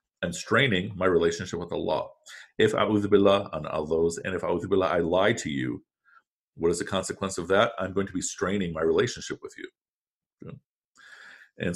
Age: 50-69